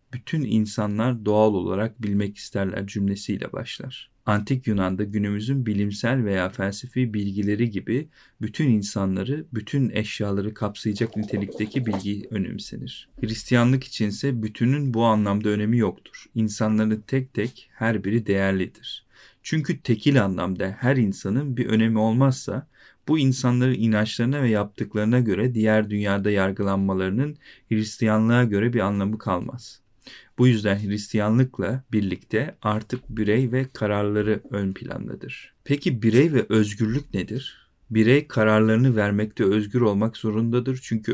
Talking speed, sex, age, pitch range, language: 120 wpm, male, 40-59, 105-125 Hz, Turkish